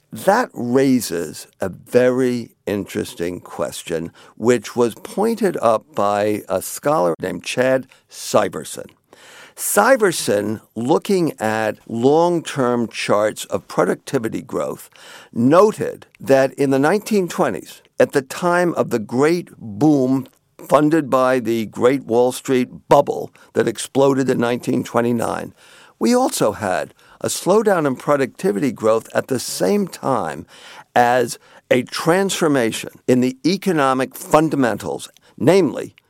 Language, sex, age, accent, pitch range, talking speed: English, male, 50-69, American, 115-160 Hz, 110 wpm